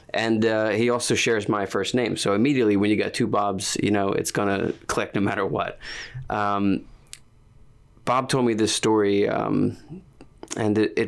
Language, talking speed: English, 180 wpm